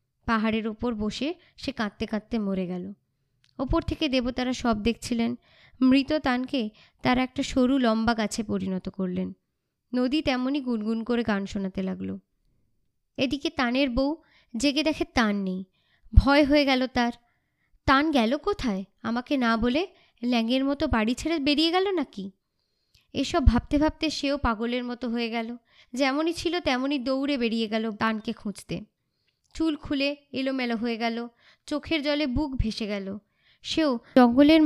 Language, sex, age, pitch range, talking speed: Bengali, male, 20-39, 225-285 Hz, 140 wpm